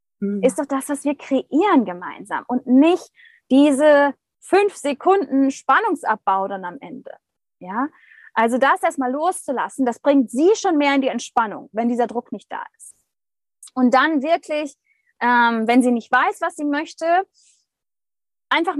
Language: German